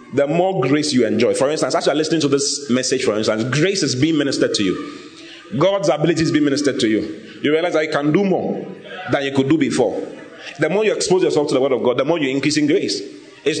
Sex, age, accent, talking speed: male, 30-49, Nigerian, 255 wpm